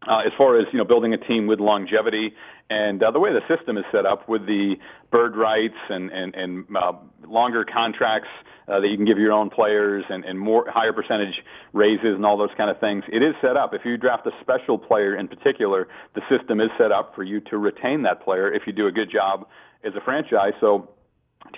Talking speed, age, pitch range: 235 wpm, 40-59, 105-120 Hz